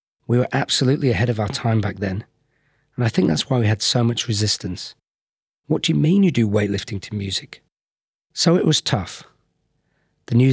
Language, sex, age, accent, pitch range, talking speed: English, male, 40-59, British, 105-130 Hz, 195 wpm